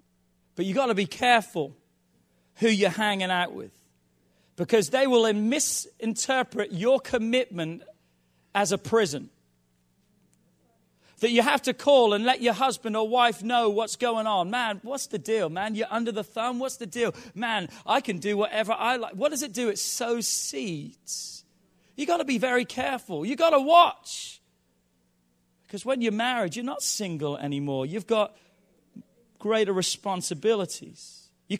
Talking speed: 160 wpm